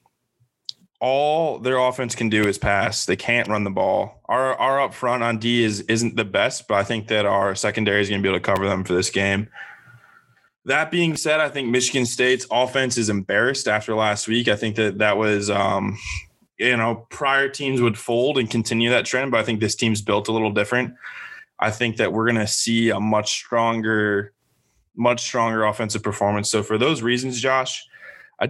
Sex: male